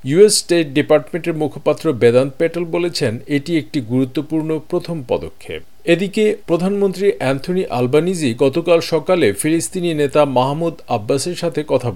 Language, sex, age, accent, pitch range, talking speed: Bengali, male, 50-69, native, 145-185 Hz, 120 wpm